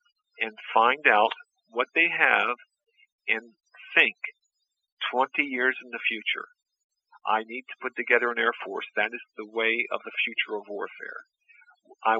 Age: 50-69